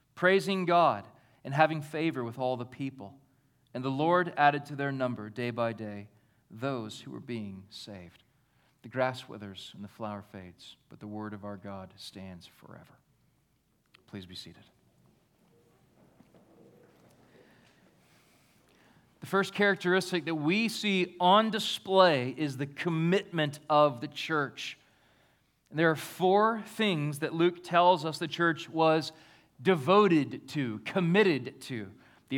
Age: 40-59